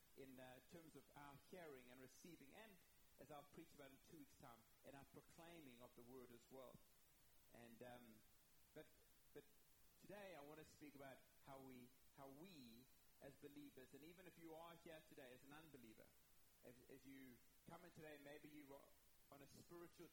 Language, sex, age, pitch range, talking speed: English, male, 30-49, 130-165 Hz, 185 wpm